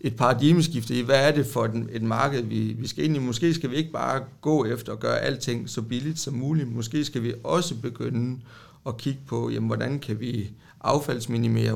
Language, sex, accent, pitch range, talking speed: Danish, male, native, 115-145 Hz, 200 wpm